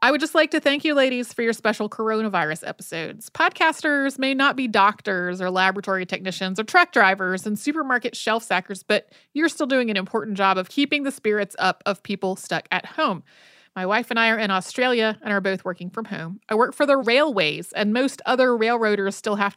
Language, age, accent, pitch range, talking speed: English, 30-49, American, 190-245 Hz, 210 wpm